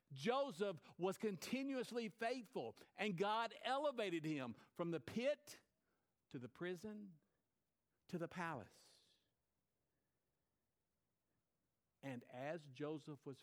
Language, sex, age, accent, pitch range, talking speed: English, male, 60-79, American, 115-160 Hz, 95 wpm